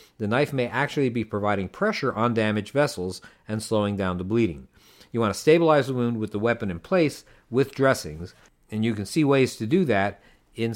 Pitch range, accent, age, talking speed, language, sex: 105-140 Hz, American, 50-69, 205 wpm, English, male